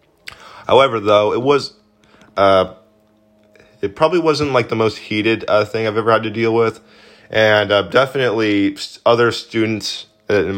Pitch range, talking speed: 100-120 Hz, 145 wpm